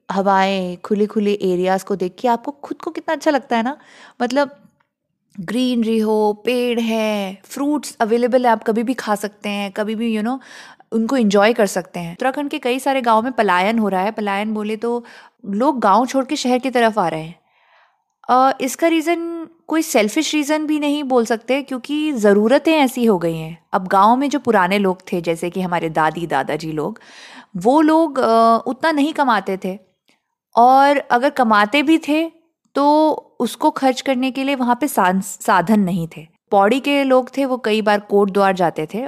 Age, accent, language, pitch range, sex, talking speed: 20-39, Indian, English, 195-265 Hz, female, 130 wpm